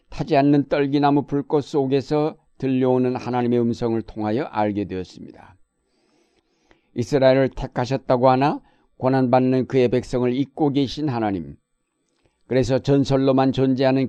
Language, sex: Korean, male